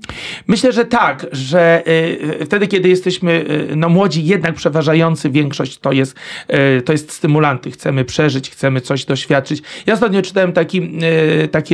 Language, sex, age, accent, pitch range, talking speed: Polish, male, 40-59, native, 145-175 Hz, 130 wpm